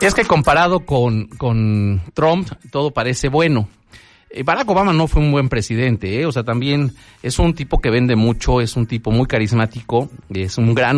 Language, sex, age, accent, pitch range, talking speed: Spanish, male, 40-59, Mexican, 105-140 Hz, 185 wpm